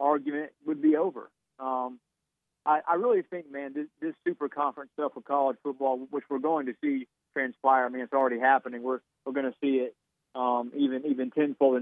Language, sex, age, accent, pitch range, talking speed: English, male, 40-59, American, 130-155 Hz, 210 wpm